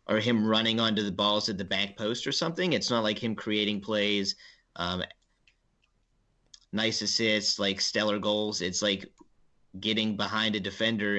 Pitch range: 95-110 Hz